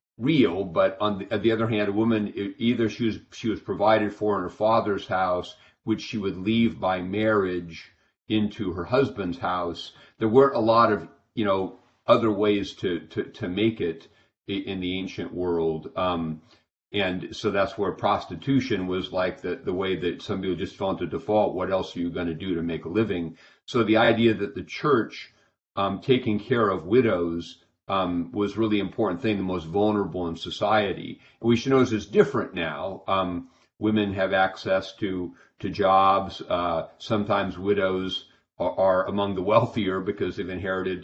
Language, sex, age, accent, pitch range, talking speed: English, male, 40-59, American, 90-105 Hz, 185 wpm